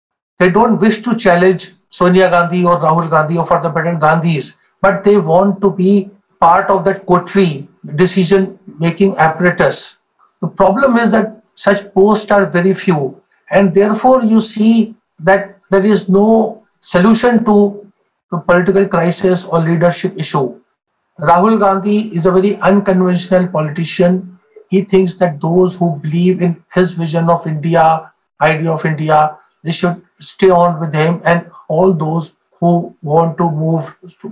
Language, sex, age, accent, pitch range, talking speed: English, male, 60-79, Indian, 170-195 Hz, 150 wpm